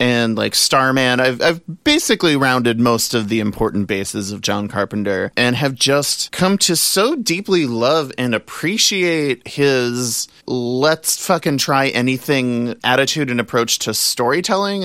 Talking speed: 130 wpm